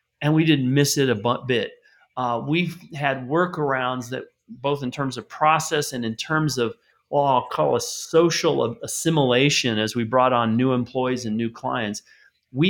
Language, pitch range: English, 115-150 Hz